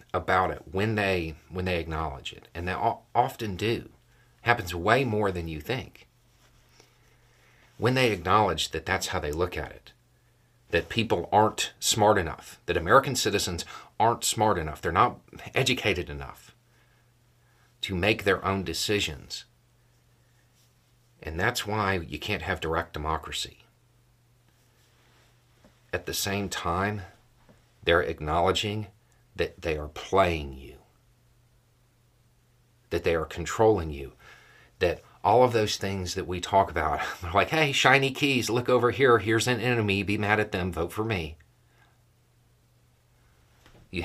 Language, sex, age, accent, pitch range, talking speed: English, male, 40-59, American, 95-120 Hz, 135 wpm